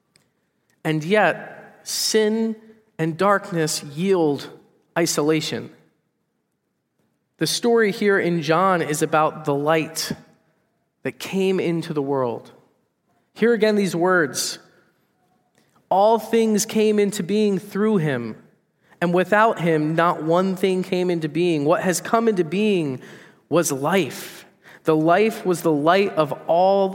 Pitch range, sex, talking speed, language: 165-210 Hz, male, 120 wpm, English